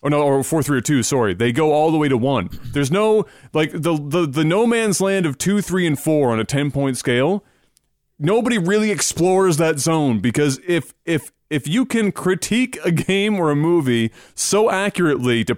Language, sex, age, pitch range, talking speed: English, male, 30-49, 135-185 Hz, 210 wpm